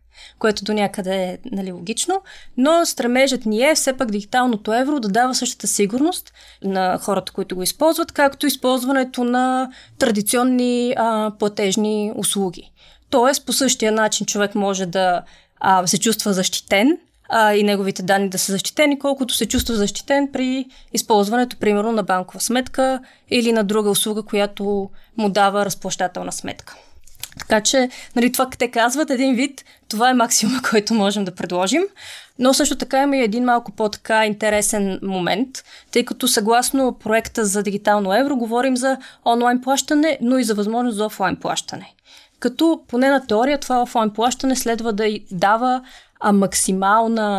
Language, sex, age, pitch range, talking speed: Bulgarian, female, 20-39, 205-260 Hz, 155 wpm